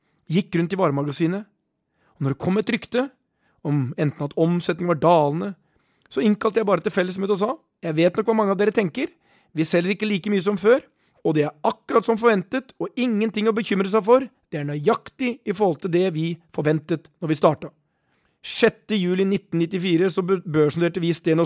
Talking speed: 195 wpm